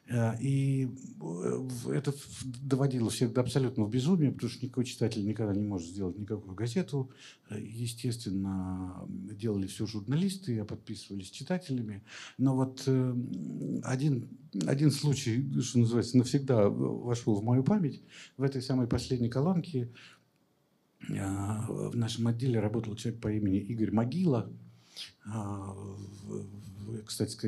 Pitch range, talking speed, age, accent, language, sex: 100-130 Hz, 110 wpm, 50-69, native, Russian, male